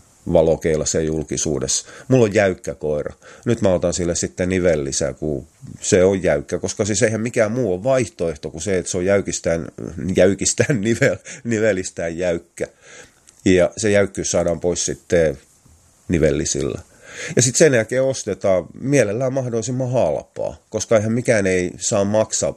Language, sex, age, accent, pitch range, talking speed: Finnish, male, 30-49, native, 85-110 Hz, 145 wpm